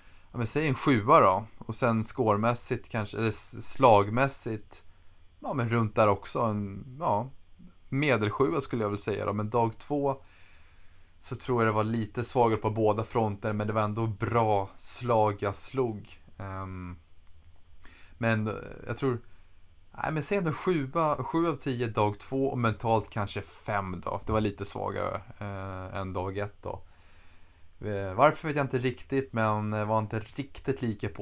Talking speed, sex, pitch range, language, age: 160 wpm, male, 95-120 Hz, Swedish, 20-39